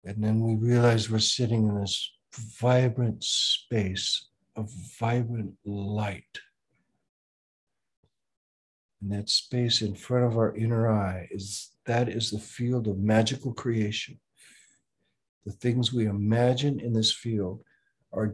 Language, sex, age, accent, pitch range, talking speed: English, male, 60-79, American, 105-120 Hz, 125 wpm